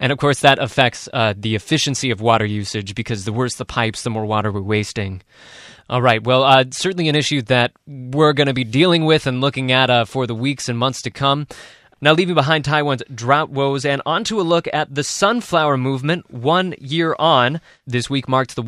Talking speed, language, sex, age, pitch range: 220 wpm, English, male, 20-39, 125-155 Hz